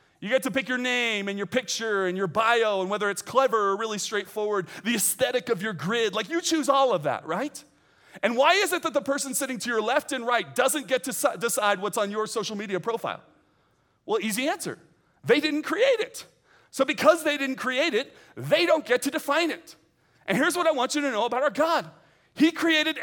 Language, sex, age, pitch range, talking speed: English, male, 40-59, 170-270 Hz, 225 wpm